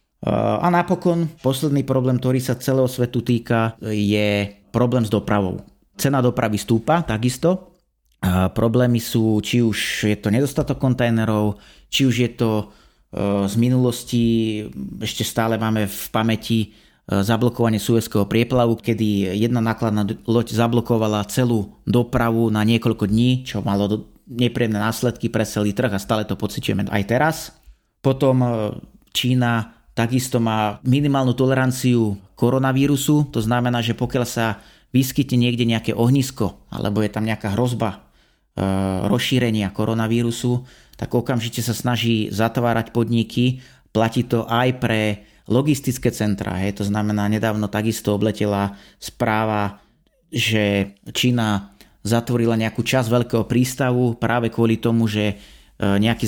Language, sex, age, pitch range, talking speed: Slovak, male, 30-49, 105-125 Hz, 125 wpm